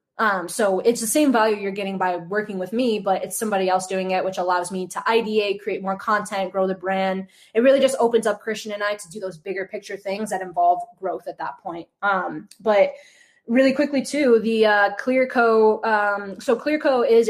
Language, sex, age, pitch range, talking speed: English, female, 10-29, 190-220 Hz, 210 wpm